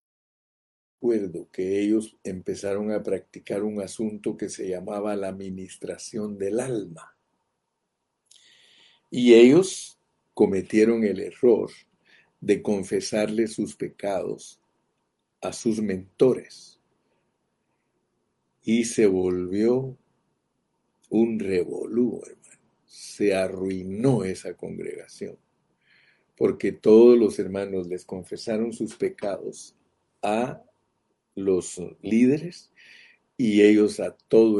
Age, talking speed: 50-69, 90 wpm